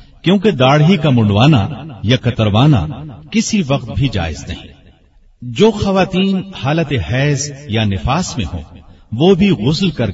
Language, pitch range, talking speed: Urdu, 105-150 Hz, 135 wpm